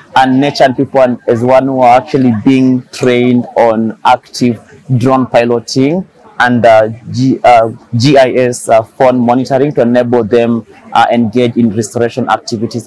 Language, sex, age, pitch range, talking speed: English, male, 30-49, 115-130 Hz, 140 wpm